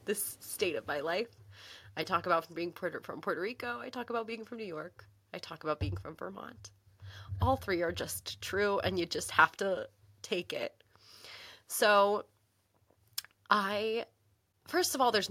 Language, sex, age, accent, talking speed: English, female, 20-39, American, 170 wpm